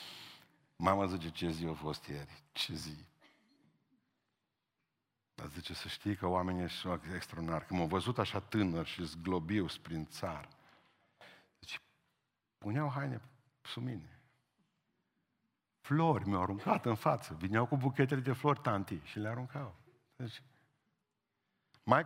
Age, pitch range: 50-69, 90-125 Hz